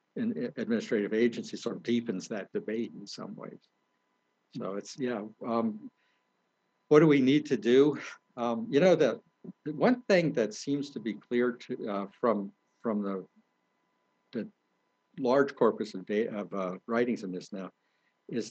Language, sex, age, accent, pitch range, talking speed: English, male, 60-79, American, 110-160 Hz, 160 wpm